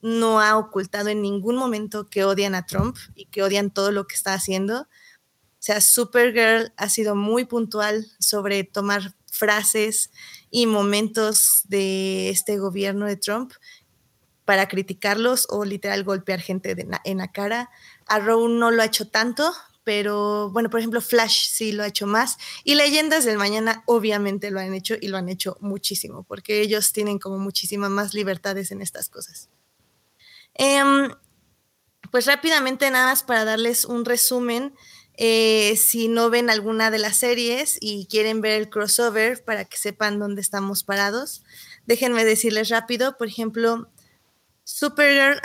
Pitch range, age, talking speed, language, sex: 205-240 Hz, 20-39, 155 wpm, Spanish, female